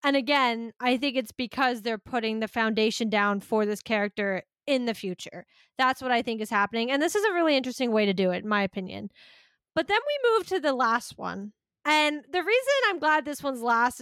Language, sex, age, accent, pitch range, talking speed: English, female, 10-29, American, 235-315 Hz, 225 wpm